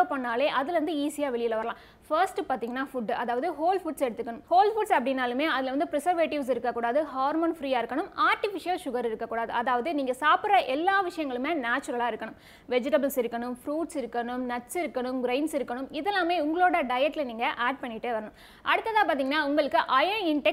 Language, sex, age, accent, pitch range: Tamil, female, 20-39, native, 250-330 Hz